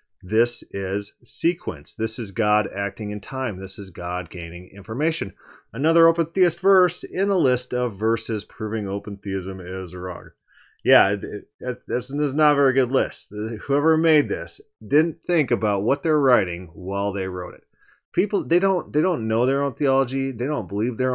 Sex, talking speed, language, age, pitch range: male, 175 wpm, English, 30-49, 95-135 Hz